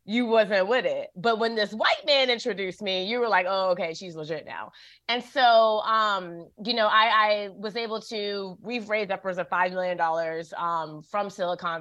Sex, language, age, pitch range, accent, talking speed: female, English, 20-39, 170-210 Hz, American, 195 wpm